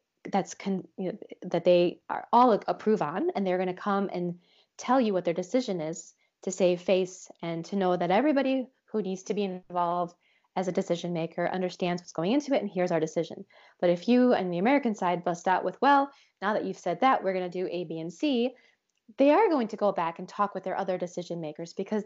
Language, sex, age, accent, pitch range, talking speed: English, female, 20-39, American, 180-235 Hz, 235 wpm